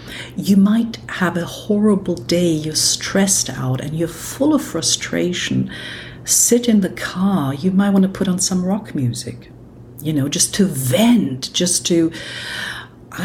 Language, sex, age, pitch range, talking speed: English, female, 60-79, 135-190 Hz, 160 wpm